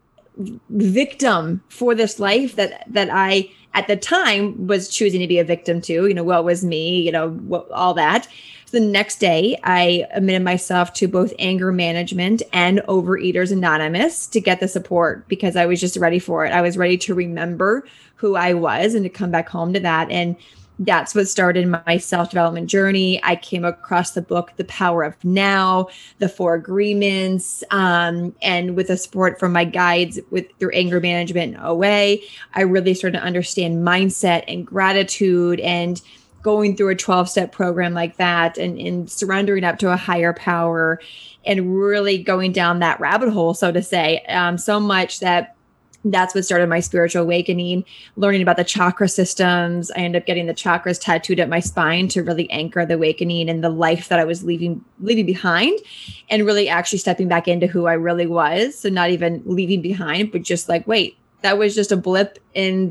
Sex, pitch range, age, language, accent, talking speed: female, 175-195 Hz, 20-39, English, American, 190 wpm